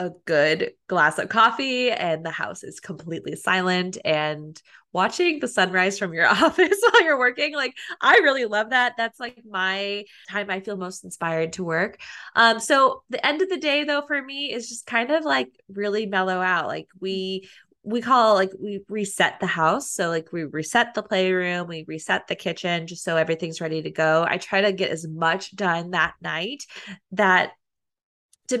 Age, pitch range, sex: 20-39, 175-235 Hz, female